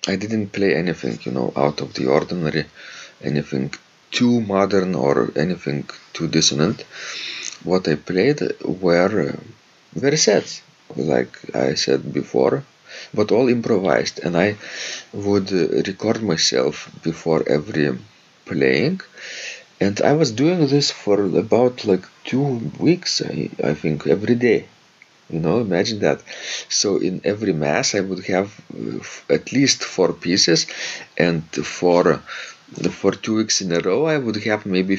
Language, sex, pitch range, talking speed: English, male, 85-115 Hz, 140 wpm